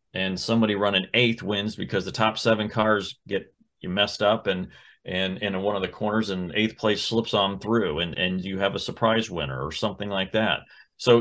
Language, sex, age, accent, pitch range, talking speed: English, male, 30-49, American, 100-115 Hz, 215 wpm